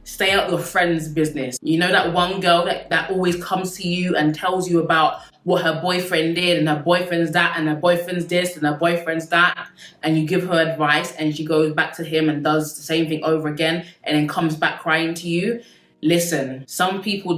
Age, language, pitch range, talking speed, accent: 20-39, English, 155-180 Hz, 220 wpm, British